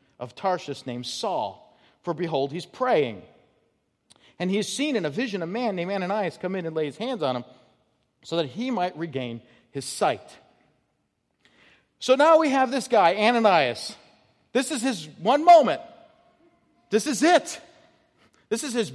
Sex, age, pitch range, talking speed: male, 40-59, 155-245 Hz, 165 wpm